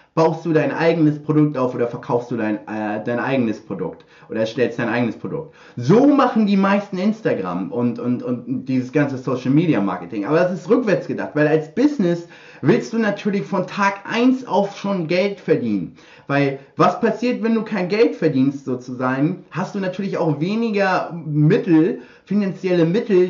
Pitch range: 155-200 Hz